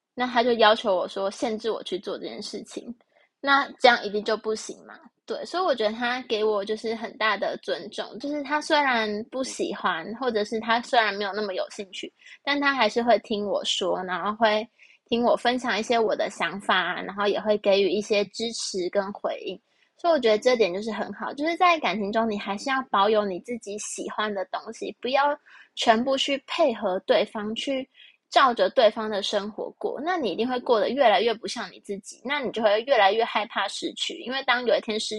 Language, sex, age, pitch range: Chinese, female, 20-39, 210-280 Hz